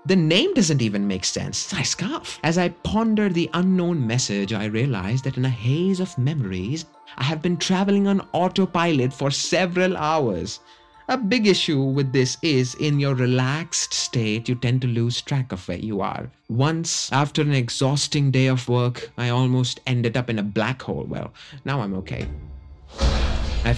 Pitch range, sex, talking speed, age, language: 110-185 Hz, male, 175 wpm, 30-49, English